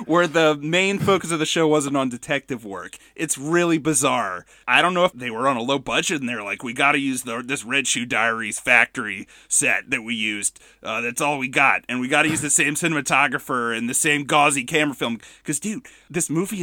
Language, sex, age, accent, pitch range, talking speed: English, male, 30-49, American, 135-190 Hz, 230 wpm